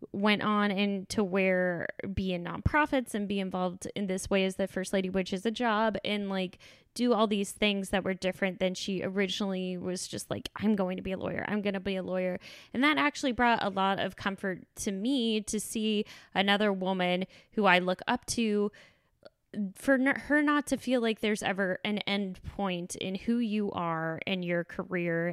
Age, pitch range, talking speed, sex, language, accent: 10-29, 185-220 Hz, 200 wpm, female, English, American